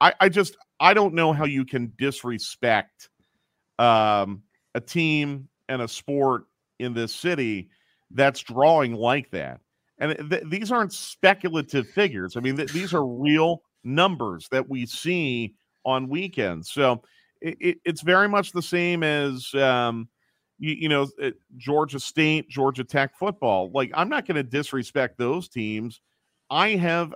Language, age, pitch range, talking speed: English, 40-59, 120-155 Hz, 140 wpm